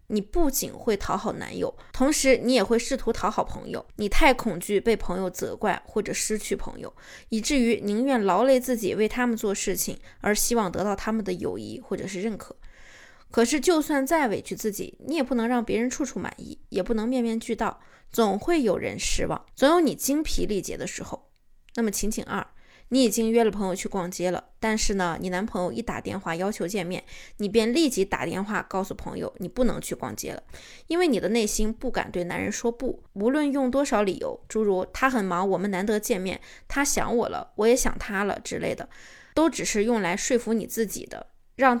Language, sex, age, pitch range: Chinese, female, 20-39, 205-260 Hz